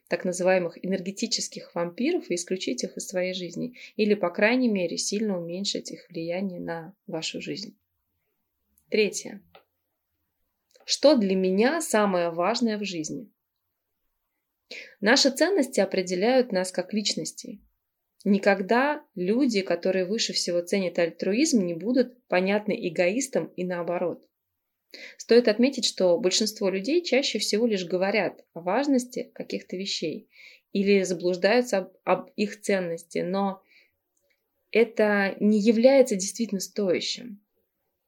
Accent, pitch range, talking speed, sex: native, 180-235 Hz, 115 wpm, female